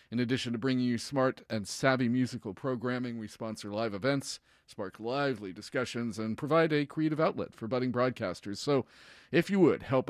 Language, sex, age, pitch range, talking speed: English, male, 40-59, 115-140 Hz, 180 wpm